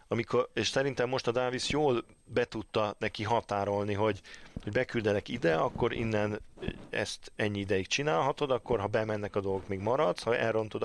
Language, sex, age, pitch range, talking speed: Hungarian, male, 40-59, 100-115 Hz, 165 wpm